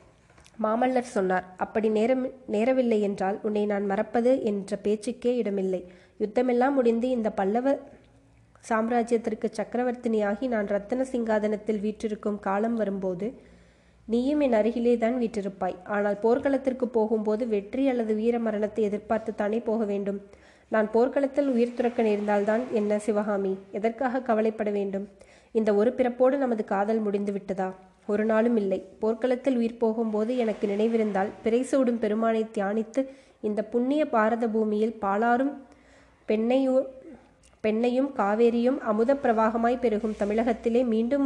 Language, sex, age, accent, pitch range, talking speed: Tamil, female, 20-39, native, 210-245 Hz, 115 wpm